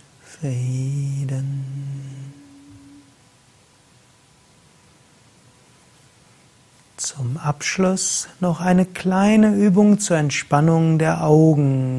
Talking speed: 55 wpm